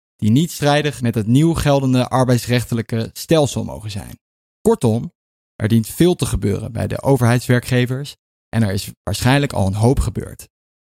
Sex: male